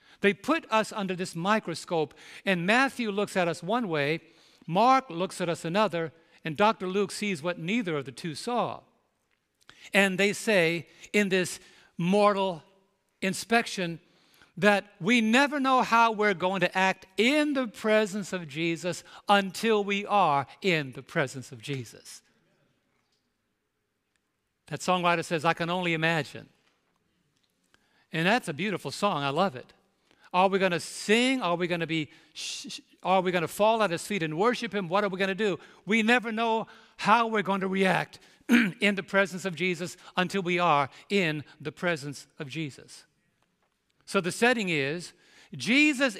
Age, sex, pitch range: 60-79, male, 165-215 Hz